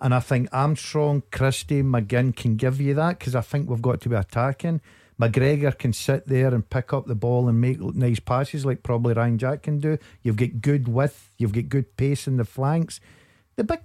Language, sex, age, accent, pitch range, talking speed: English, male, 50-69, British, 115-140 Hz, 215 wpm